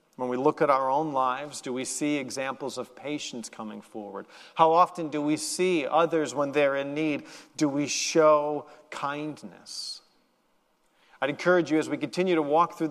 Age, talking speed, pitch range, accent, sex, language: 40-59, 175 wpm, 130-170 Hz, American, male, English